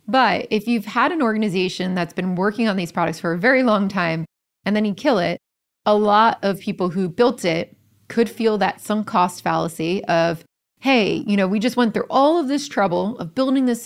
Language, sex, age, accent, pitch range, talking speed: English, female, 30-49, American, 175-230 Hz, 215 wpm